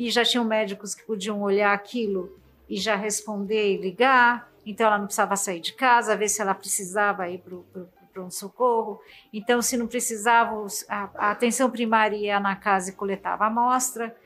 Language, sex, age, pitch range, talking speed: Portuguese, female, 50-69, 195-240 Hz, 180 wpm